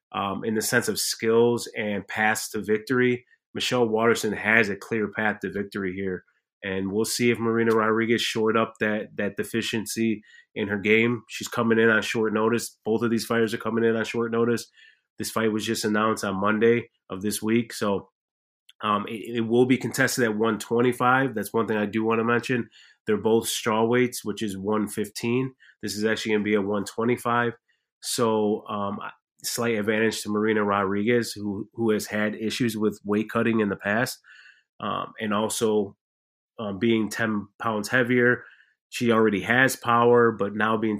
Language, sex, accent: English, male, American